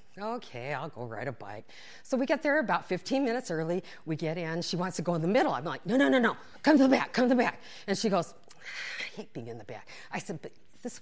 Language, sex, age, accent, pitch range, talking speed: English, female, 40-59, American, 165-260 Hz, 280 wpm